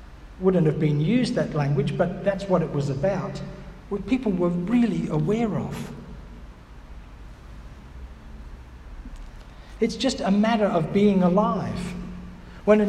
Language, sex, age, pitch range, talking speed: English, male, 60-79, 155-235 Hz, 125 wpm